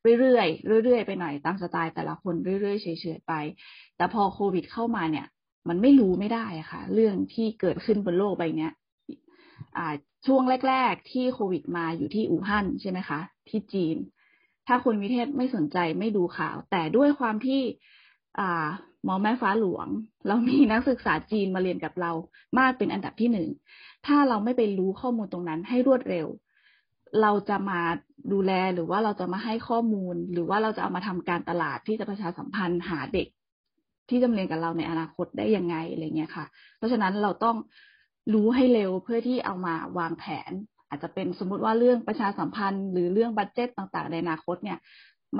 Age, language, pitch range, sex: 20-39, Thai, 175-240 Hz, female